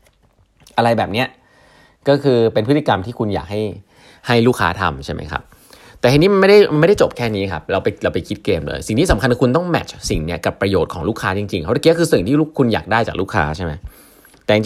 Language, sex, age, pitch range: Thai, male, 20-39, 85-120 Hz